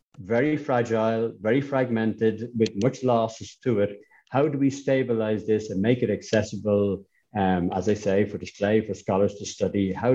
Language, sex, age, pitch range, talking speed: English, male, 60-79, 105-125 Hz, 170 wpm